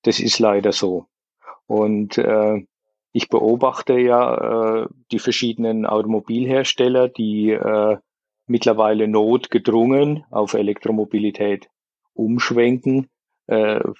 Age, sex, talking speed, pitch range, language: 50-69, male, 90 wpm, 110-120 Hz, German